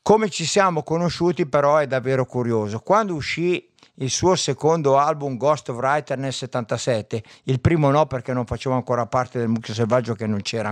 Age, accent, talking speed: 50-69, native, 185 wpm